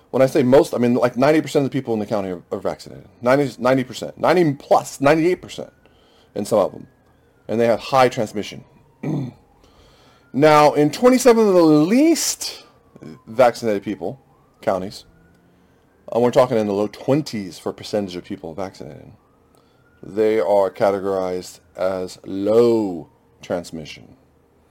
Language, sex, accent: English, male, American